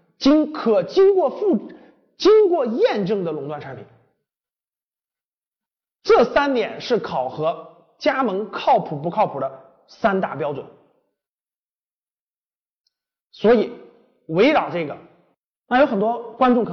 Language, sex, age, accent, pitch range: Chinese, male, 30-49, native, 200-300 Hz